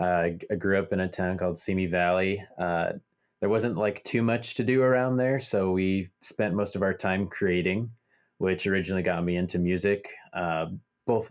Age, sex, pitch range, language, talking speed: 20-39, male, 90-100 Hz, English, 190 wpm